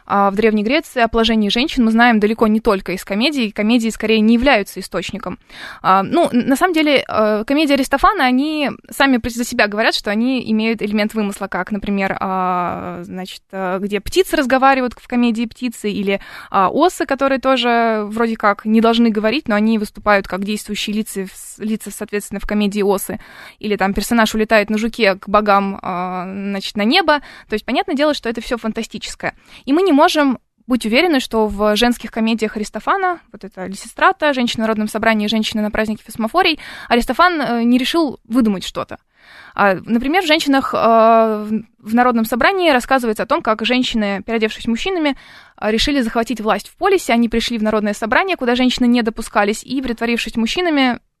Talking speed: 165 wpm